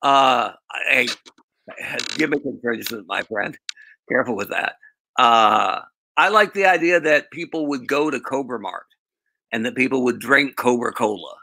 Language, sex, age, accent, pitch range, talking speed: English, male, 50-69, American, 110-170 Hz, 145 wpm